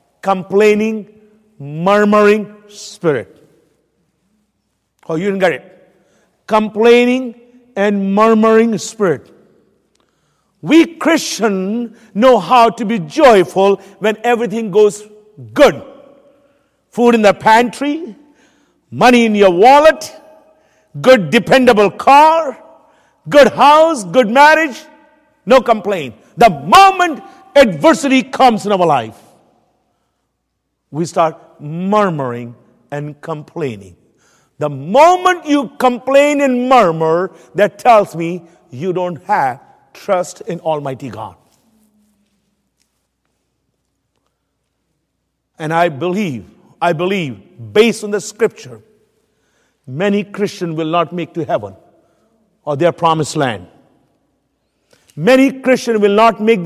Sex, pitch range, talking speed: male, 165-245 Hz, 100 wpm